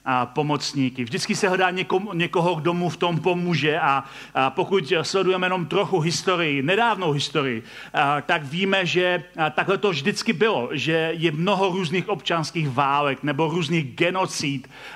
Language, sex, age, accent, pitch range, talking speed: Czech, male, 40-59, native, 155-200 Hz, 135 wpm